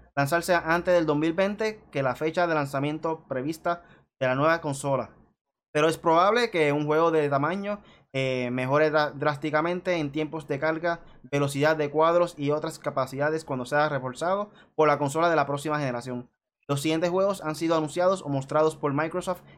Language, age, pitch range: Spanish, 20-39, 140-170 Hz